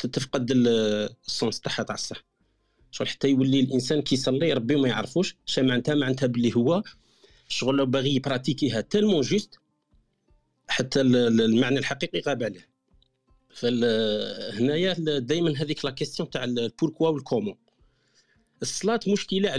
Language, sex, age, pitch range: Arabic, male, 50-69, 125-160 Hz